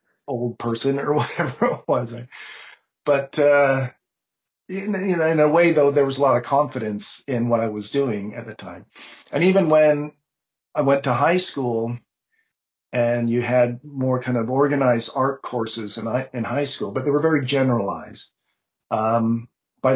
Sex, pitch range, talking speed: male, 120-150 Hz, 170 wpm